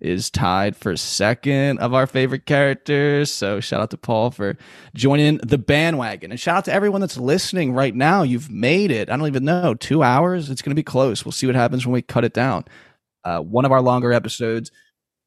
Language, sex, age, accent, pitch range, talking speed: English, male, 20-39, American, 110-135 Hz, 215 wpm